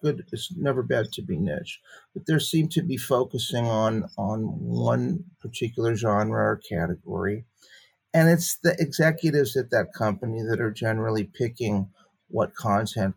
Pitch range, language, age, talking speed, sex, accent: 110-155 Hz, English, 50-69, 150 wpm, male, American